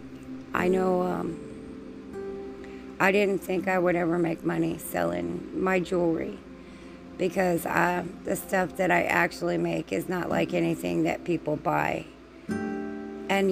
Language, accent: English, American